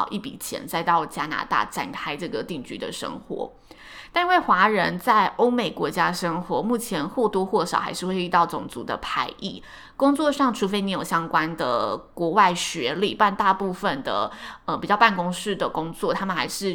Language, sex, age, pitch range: Chinese, female, 20-39, 175-220 Hz